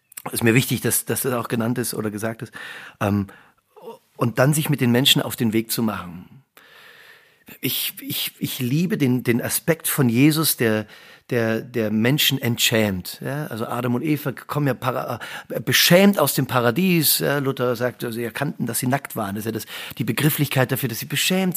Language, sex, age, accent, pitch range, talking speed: German, male, 40-59, German, 115-145 Hz, 195 wpm